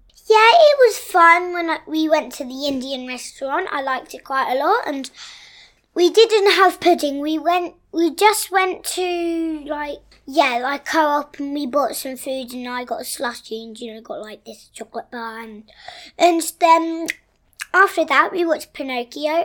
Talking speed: 180 wpm